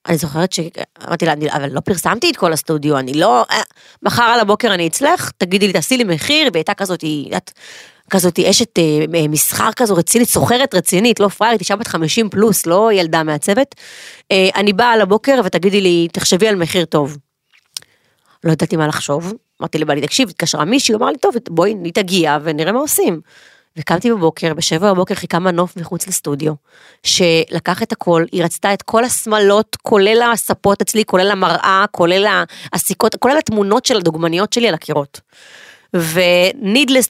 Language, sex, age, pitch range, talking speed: Hebrew, female, 30-49, 165-210 Hz, 160 wpm